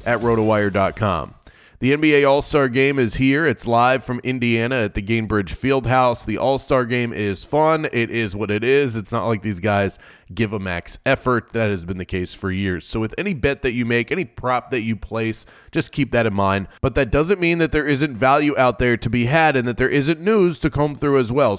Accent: American